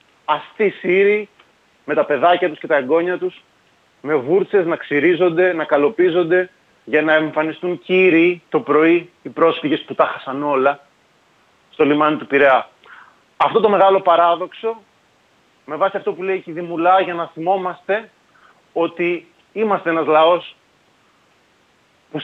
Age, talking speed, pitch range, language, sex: 30-49, 140 wpm, 155-195 Hz, Greek, male